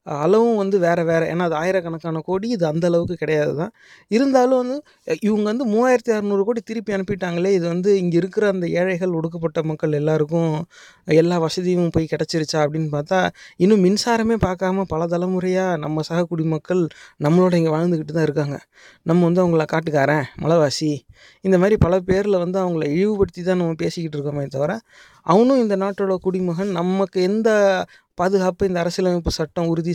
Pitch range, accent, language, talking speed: 165-200 Hz, Indian, English, 125 wpm